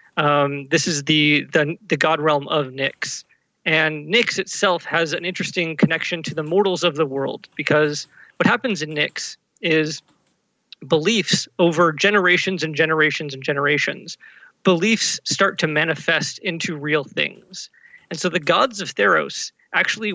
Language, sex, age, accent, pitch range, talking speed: English, male, 30-49, American, 150-185 Hz, 150 wpm